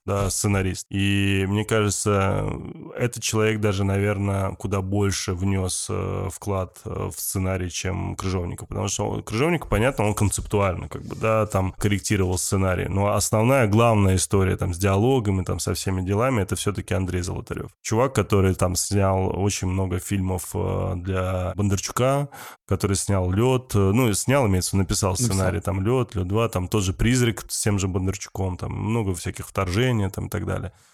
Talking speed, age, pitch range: 165 wpm, 20-39, 95-110 Hz